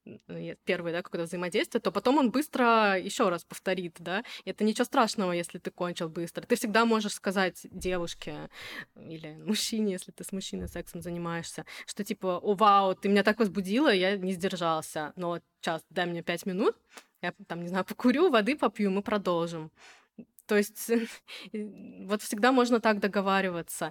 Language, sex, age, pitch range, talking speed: Russian, female, 20-39, 180-220 Hz, 170 wpm